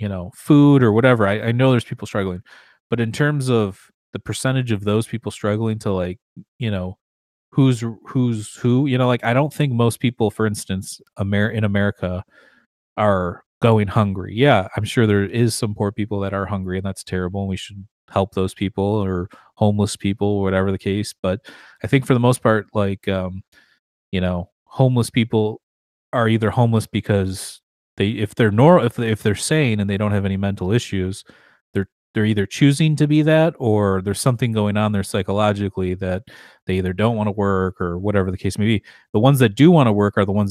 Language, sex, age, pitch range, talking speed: English, male, 30-49, 95-115 Hz, 205 wpm